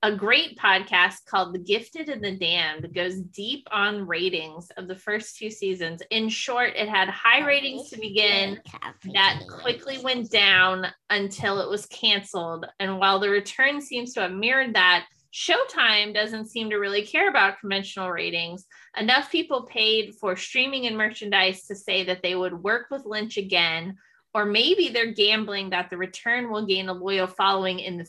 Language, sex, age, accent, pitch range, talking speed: English, female, 20-39, American, 185-225 Hz, 175 wpm